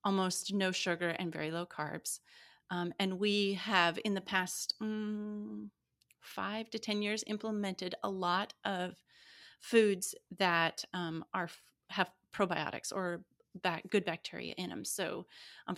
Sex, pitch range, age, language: female, 165-200 Hz, 30-49, English